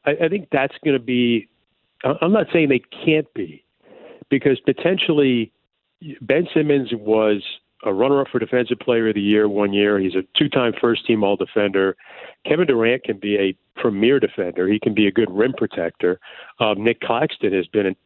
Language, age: English, 50-69